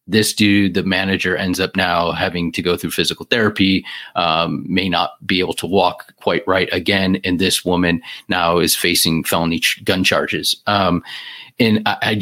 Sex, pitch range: male, 95-110 Hz